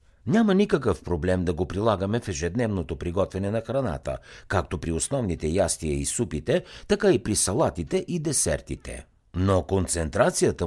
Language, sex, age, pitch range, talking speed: Bulgarian, male, 60-79, 85-120 Hz, 140 wpm